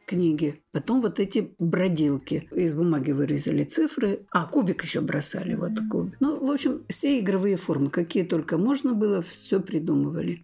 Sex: female